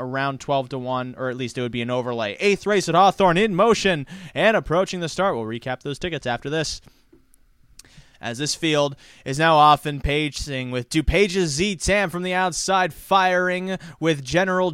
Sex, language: male, English